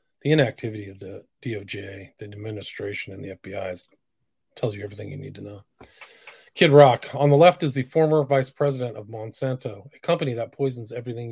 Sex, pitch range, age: male, 110-140 Hz, 40-59